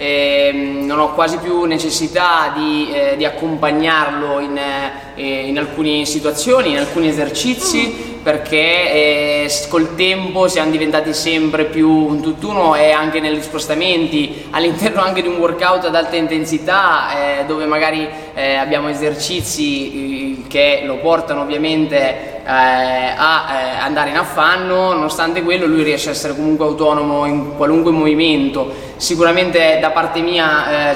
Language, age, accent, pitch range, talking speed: Italian, 20-39, native, 140-165 Hz, 140 wpm